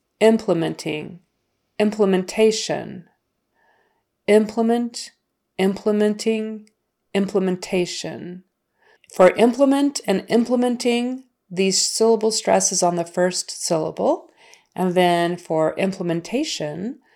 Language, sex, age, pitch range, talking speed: English, female, 40-59, 180-230 Hz, 75 wpm